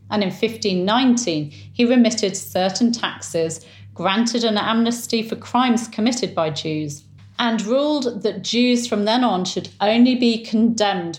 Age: 40-59